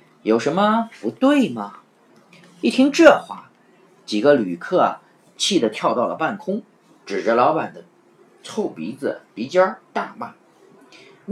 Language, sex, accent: Chinese, male, native